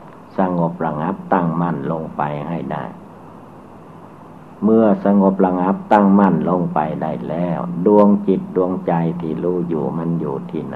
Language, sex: Thai, male